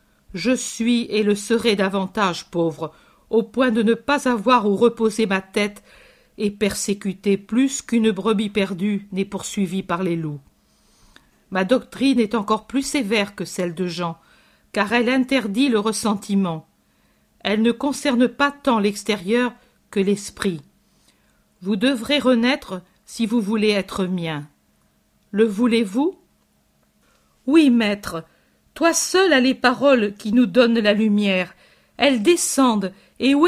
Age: 50-69